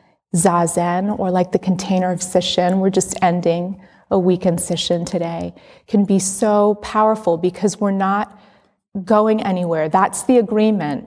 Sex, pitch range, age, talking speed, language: female, 170-225 Hz, 30-49, 145 wpm, English